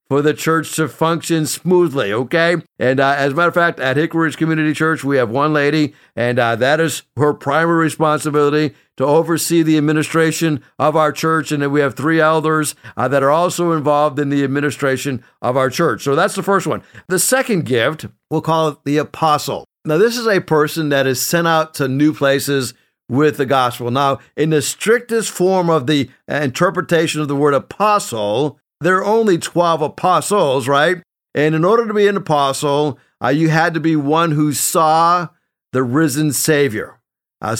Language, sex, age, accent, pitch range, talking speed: English, male, 60-79, American, 135-160 Hz, 190 wpm